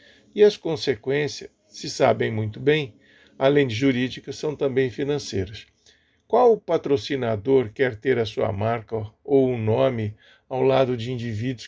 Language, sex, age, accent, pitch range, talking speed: Portuguese, male, 50-69, Brazilian, 110-140 Hz, 140 wpm